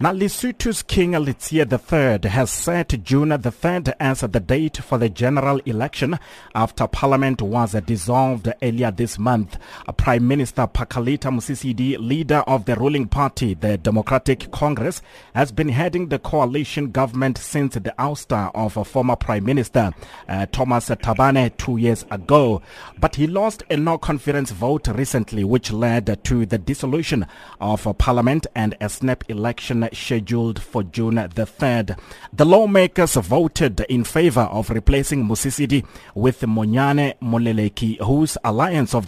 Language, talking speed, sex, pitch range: English, 140 wpm, male, 115-140 Hz